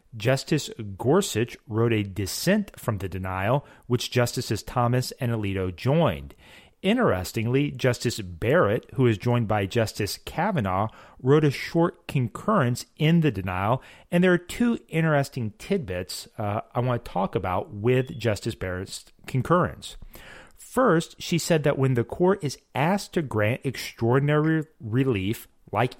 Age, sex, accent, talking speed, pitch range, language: 40-59, male, American, 140 wpm, 110-165 Hz, English